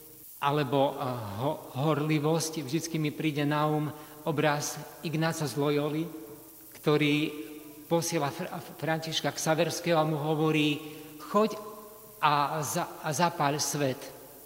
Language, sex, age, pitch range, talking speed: Slovak, male, 50-69, 135-160 Hz, 110 wpm